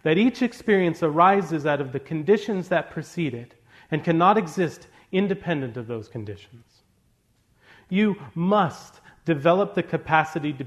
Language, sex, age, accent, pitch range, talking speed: English, male, 40-59, American, 125-170 Hz, 135 wpm